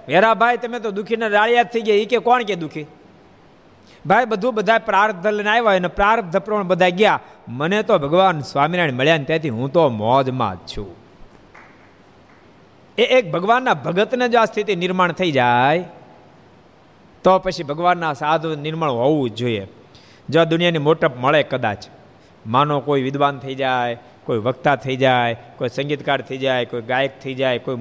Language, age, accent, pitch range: Gujarati, 50-69, native, 130-175 Hz